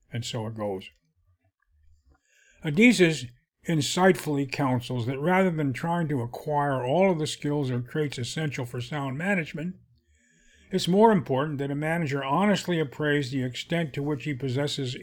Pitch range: 125-155 Hz